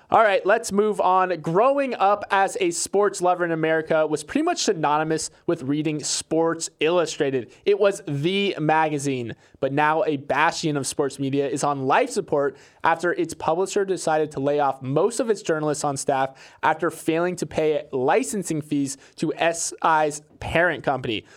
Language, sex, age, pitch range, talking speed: English, male, 20-39, 145-180 Hz, 165 wpm